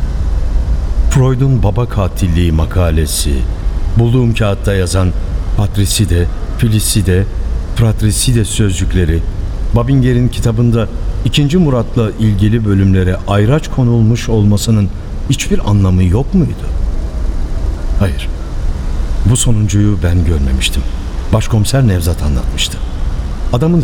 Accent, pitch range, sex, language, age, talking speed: native, 80-120 Hz, male, Turkish, 60-79, 85 wpm